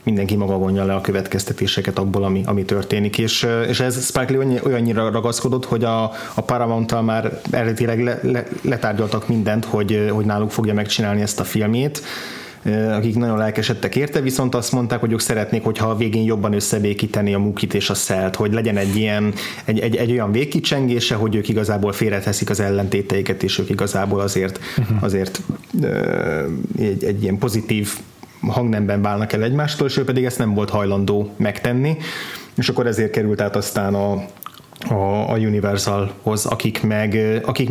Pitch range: 105-120 Hz